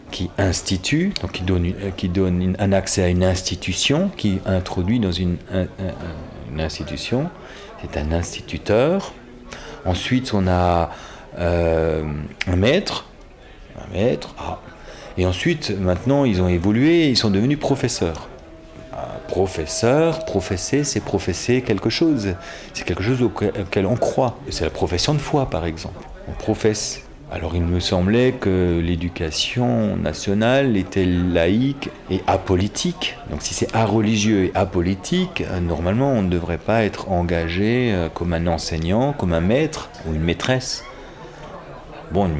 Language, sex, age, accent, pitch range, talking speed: French, male, 40-59, French, 85-115 Hz, 140 wpm